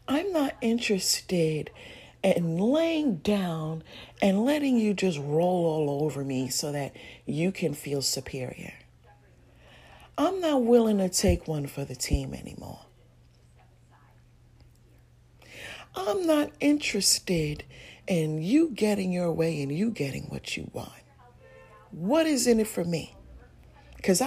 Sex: female